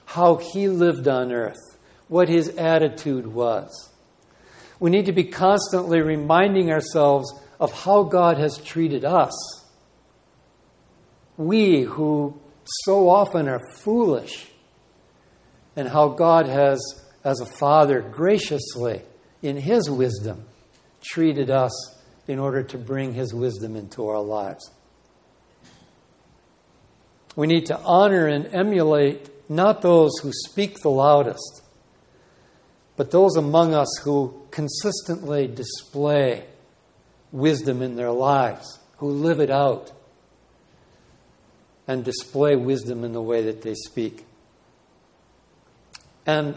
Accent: American